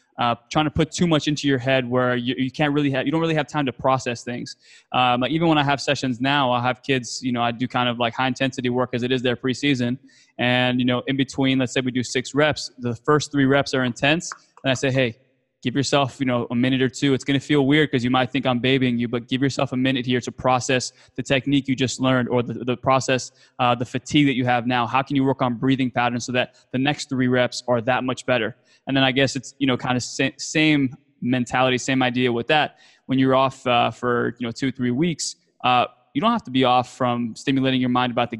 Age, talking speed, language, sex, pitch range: 20-39, 265 wpm, English, male, 125-140 Hz